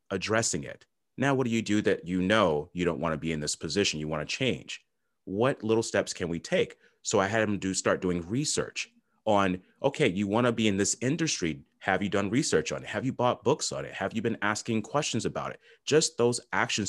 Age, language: 30-49, English